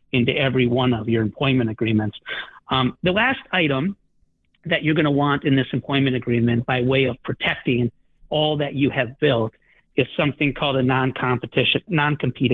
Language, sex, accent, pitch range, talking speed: English, male, American, 130-170 Hz, 165 wpm